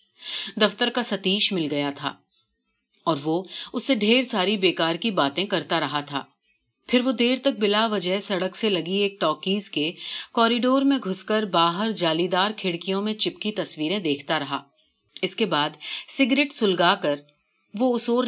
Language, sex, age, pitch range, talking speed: Urdu, female, 40-59, 155-220 Hz, 165 wpm